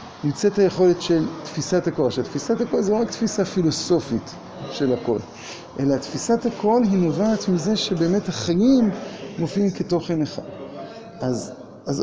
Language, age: Hebrew, 50-69